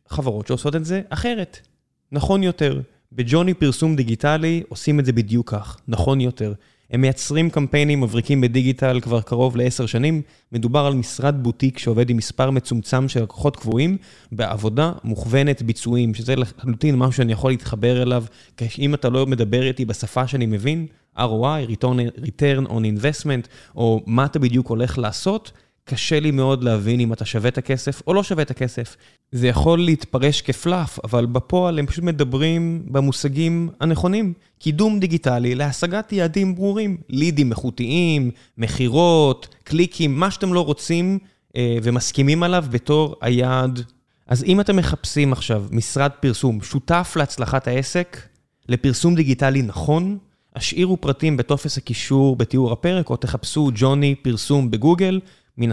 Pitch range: 120-155 Hz